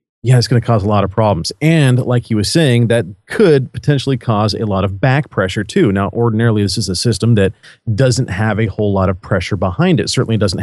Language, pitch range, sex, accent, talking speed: English, 105-135 Hz, male, American, 245 wpm